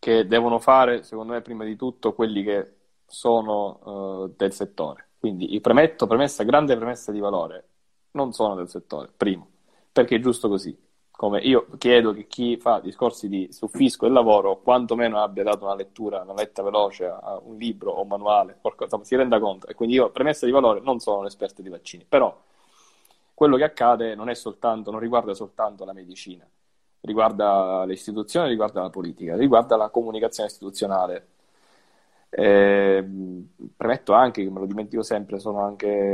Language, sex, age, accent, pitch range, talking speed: Italian, male, 20-39, native, 100-115 Hz, 170 wpm